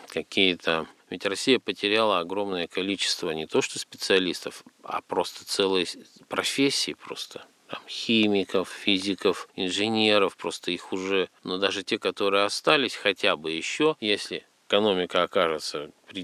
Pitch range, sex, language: 85-110 Hz, male, Russian